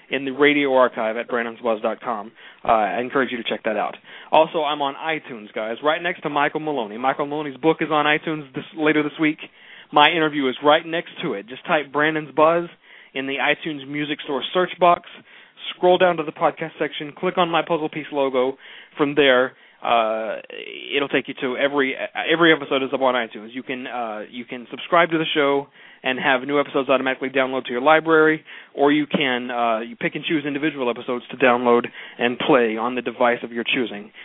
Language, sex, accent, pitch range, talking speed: English, male, American, 125-155 Hz, 205 wpm